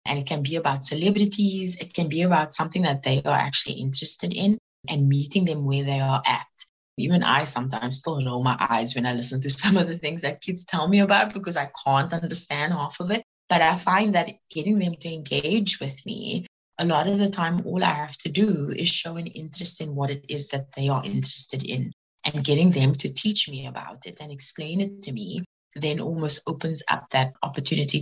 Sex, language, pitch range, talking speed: female, English, 140-180 Hz, 220 wpm